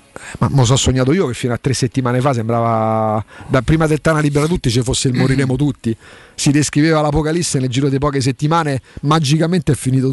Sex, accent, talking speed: male, native, 205 wpm